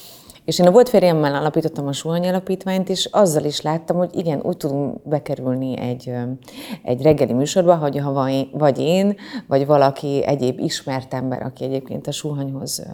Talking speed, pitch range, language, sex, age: 165 wpm, 135-180 Hz, Hungarian, female, 30-49